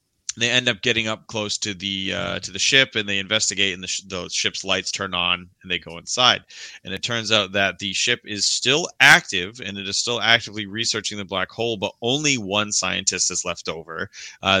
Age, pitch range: 30-49, 95-120 Hz